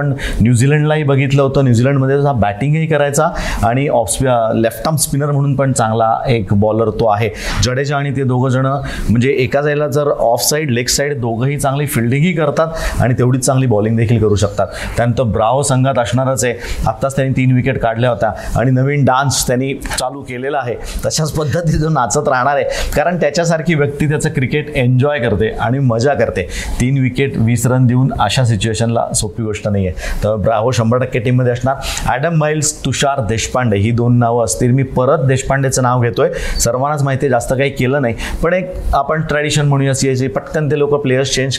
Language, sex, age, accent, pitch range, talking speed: Marathi, male, 30-49, native, 115-140 Hz, 110 wpm